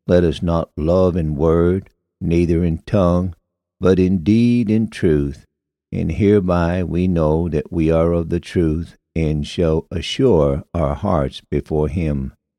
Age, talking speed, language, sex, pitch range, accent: 60-79, 150 wpm, English, male, 75-95 Hz, American